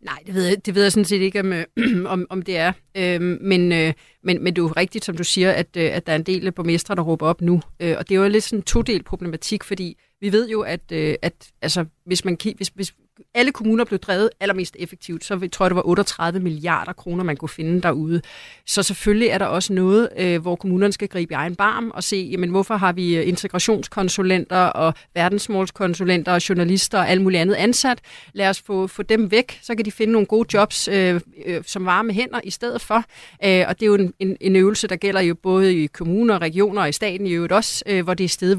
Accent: native